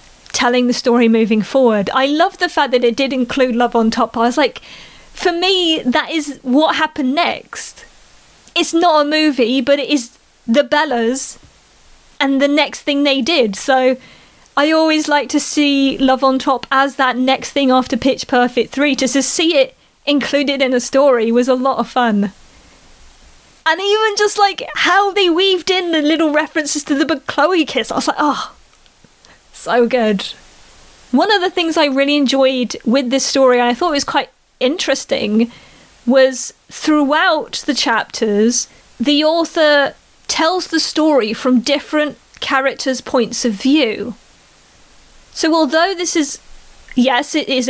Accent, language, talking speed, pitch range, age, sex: British, English, 165 wpm, 250-310 Hz, 30-49, female